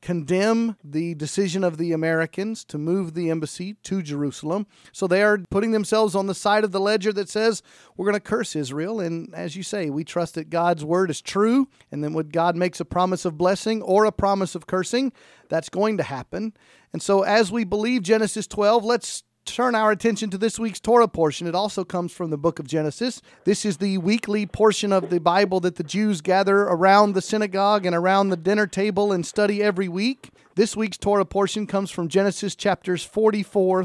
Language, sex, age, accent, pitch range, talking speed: English, male, 40-59, American, 175-210 Hz, 205 wpm